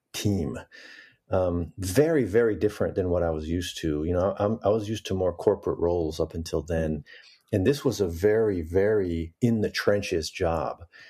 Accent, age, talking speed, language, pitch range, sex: American, 50-69, 180 wpm, English, 85-110 Hz, male